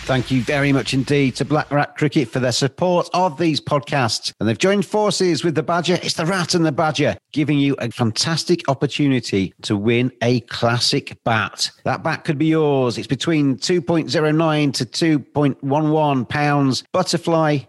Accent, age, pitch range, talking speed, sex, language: British, 40-59, 120-155 Hz, 170 wpm, male, English